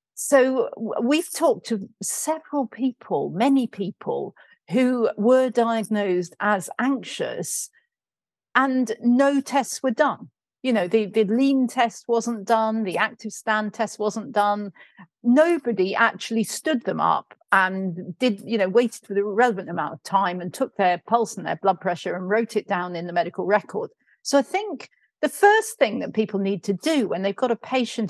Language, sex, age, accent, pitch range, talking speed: English, female, 50-69, British, 195-255 Hz, 170 wpm